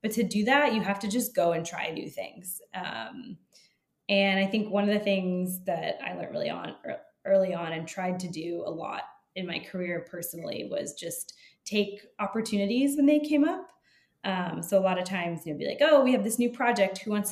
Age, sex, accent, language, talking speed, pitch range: 20-39, female, American, English, 220 wpm, 190-230 Hz